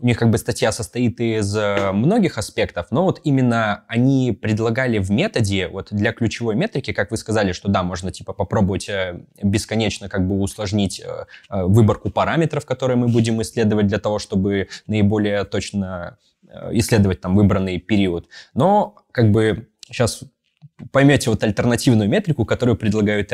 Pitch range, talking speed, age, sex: 100-120 Hz, 140 wpm, 20-39, male